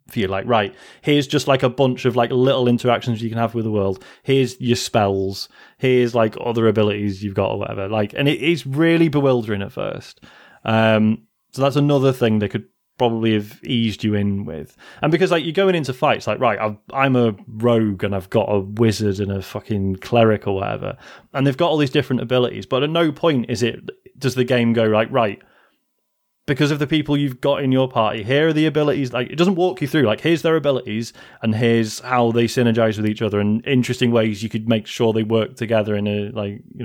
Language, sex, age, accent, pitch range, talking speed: English, male, 30-49, British, 110-135 Hz, 230 wpm